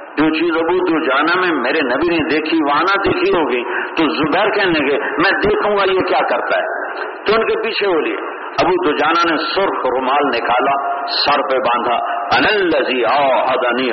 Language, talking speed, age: English, 145 wpm, 60-79